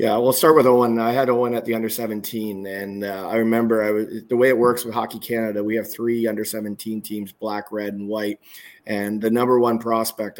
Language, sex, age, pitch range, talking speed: English, male, 20-39, 105-115 Hz, 230 wpm